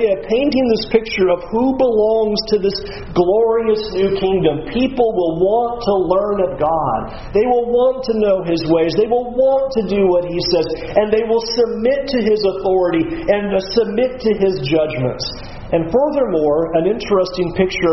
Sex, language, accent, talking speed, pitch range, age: male, English, American, 165 wpm, 155-205 Hz, 40-59